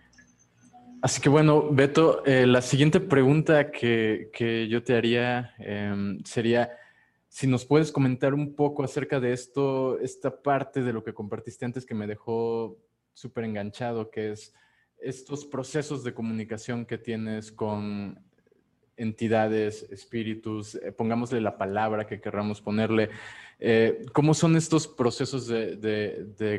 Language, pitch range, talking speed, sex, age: Spanish, 110-135 Hz, 140 wpm, male, 20-39